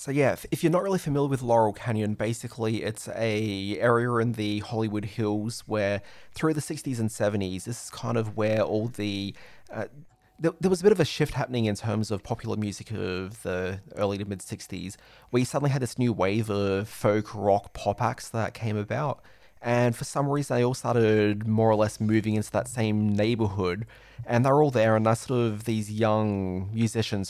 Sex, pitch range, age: male, 100-120 Hz, 20-39